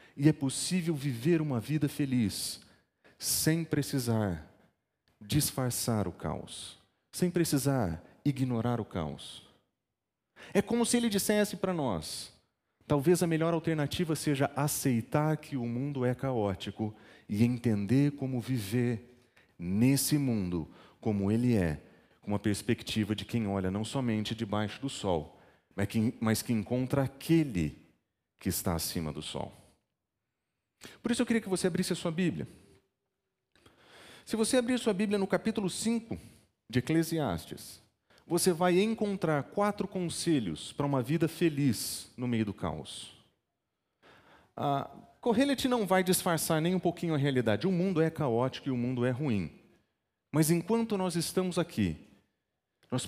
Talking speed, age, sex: 140 wpm, 40-59, male